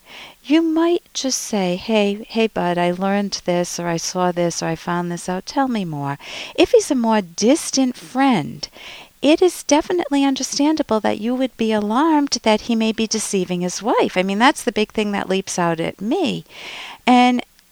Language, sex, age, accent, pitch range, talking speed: English, female, 50-69, American, 185-265 Hz, 190 wpm